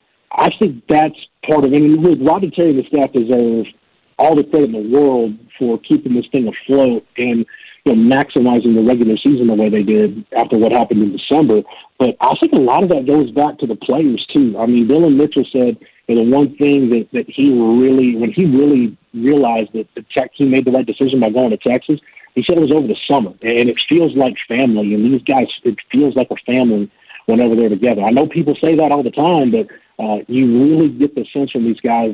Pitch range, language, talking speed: 115-145 Hz, English, 230 wpm